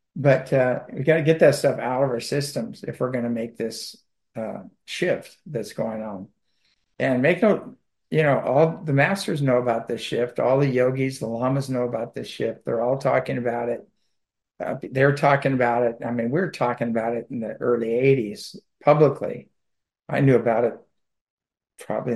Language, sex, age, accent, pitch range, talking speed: English, male, 60-79, American, 115-135 Hz, 190 wpm